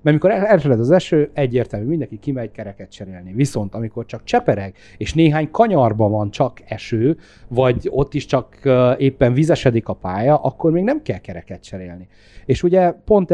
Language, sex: Hungarian, male